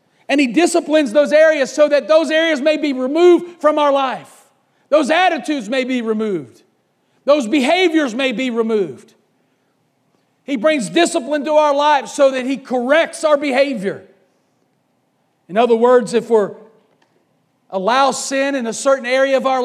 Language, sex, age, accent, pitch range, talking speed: English, male, 40-59, American, 210-270 Hz, 155 wpm